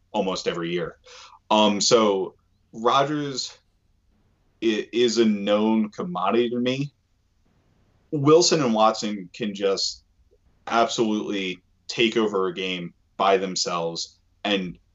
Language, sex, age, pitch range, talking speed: English, male, 20-39, 95-120 Hz, 100 wpm